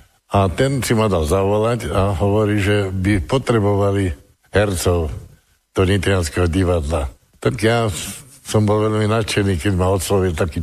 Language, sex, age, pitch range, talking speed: Slovak, male, 60-79, 90-110 Hz, 140 wpm